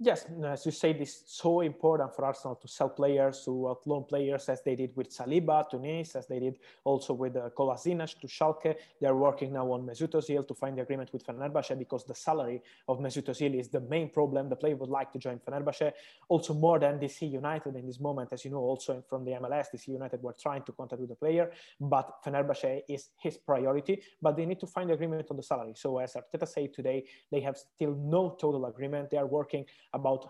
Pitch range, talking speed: 130-155 Hz, 230 wpm